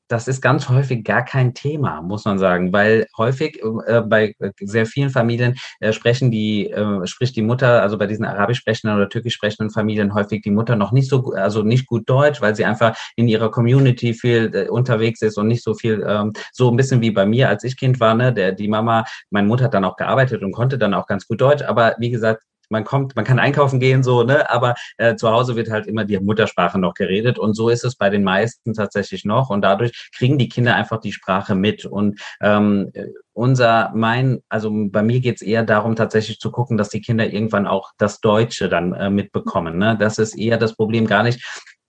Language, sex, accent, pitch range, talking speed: English, male, German, 105-120 Hz, 225 wpm